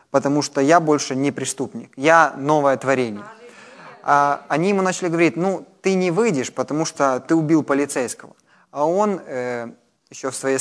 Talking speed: 165 wpm